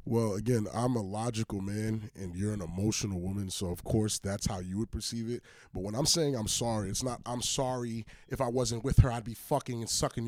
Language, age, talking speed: English, 30-49, 235 wpm